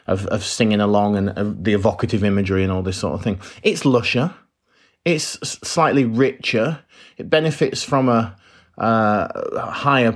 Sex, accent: male, British